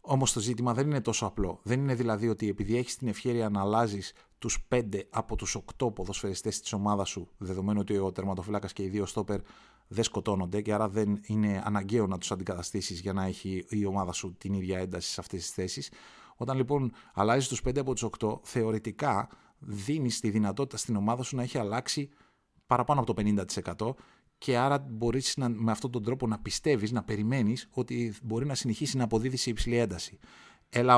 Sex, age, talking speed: male, 30-49, 195 wpm